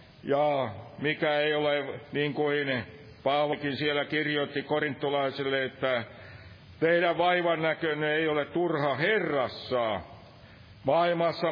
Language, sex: Finnish, male